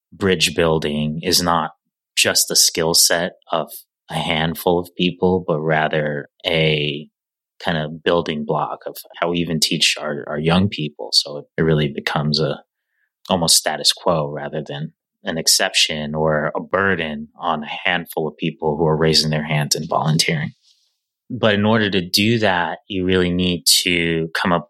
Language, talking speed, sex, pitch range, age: English, 170 wpm, male, 75-90 Hz, 30-49